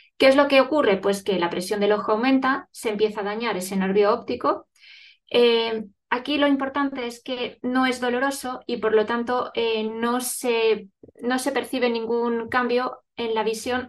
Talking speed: 180 wpm